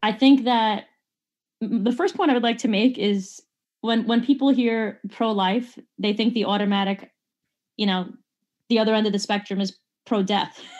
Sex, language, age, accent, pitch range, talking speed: female, English, 20-39, American, 200-245 Hz, 170 wpm